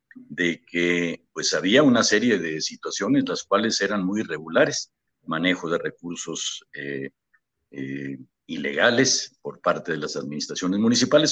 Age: 50-69